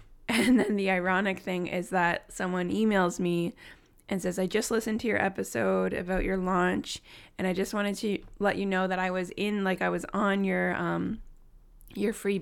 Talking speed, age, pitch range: 200 wpm, 20-39, 175-200 Hz